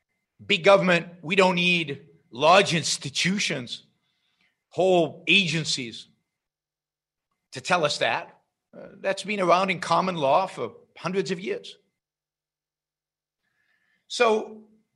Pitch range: 145-195 Hz